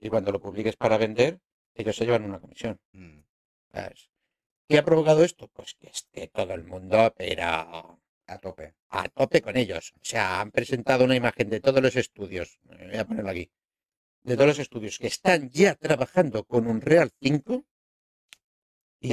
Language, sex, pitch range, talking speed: Spanish, male, 115-165 Hz, 175 wpm